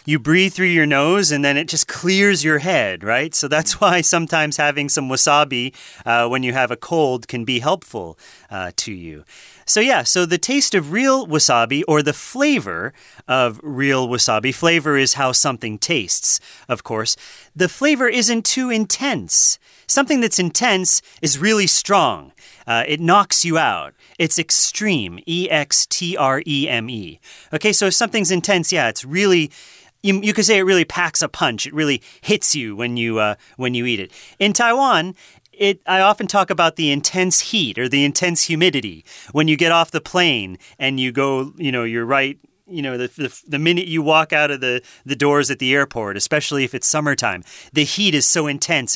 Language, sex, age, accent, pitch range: Chinese, male, 30-49, American, 130-185 Hz